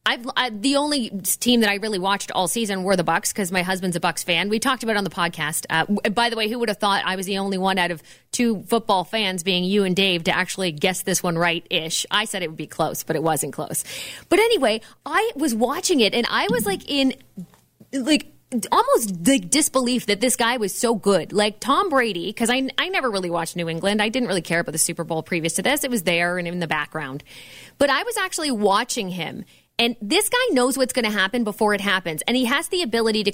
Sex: female